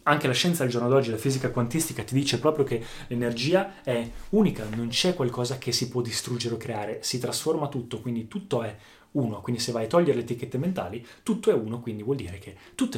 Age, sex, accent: 20-39, male, native